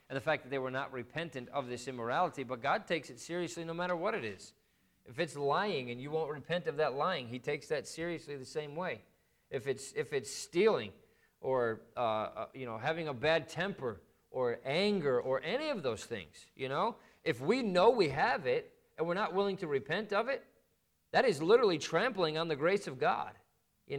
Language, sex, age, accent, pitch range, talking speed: English, male, 40-59, American, 140-190 Hz, 215 wpm